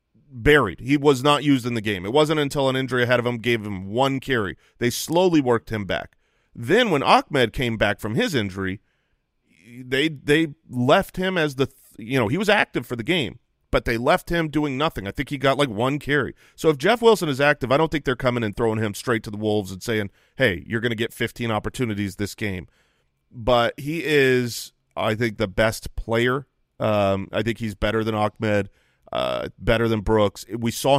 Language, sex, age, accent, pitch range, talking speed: English, male, 30-49, American, 110-145 Hz, 210 wpm